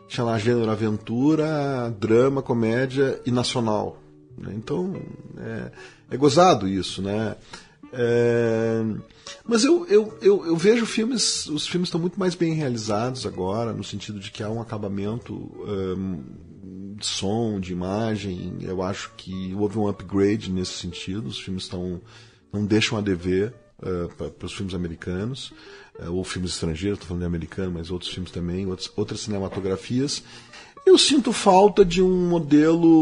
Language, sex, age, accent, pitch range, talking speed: Portuguese, male, 40-59, Brazilian, 95-135 Hz, 150 wpm